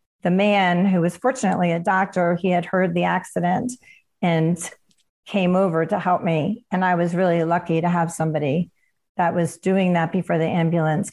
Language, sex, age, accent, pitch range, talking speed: English, female, 40-59, American, 175-210 Hz, 180 wpm